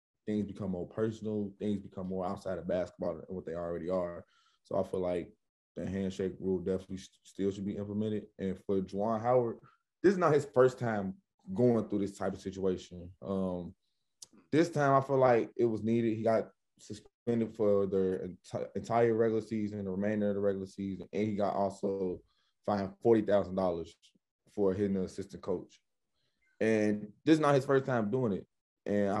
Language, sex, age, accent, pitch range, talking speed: English, male, 20-39, American, 95-105 Hz, 180 wpm